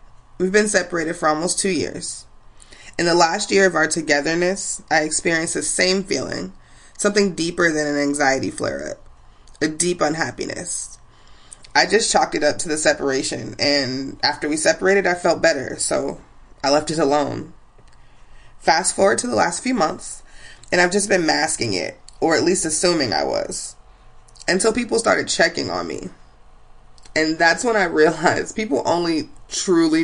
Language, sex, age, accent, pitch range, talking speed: English, female, 20-39, American, 145-190 Hz, 165 wpm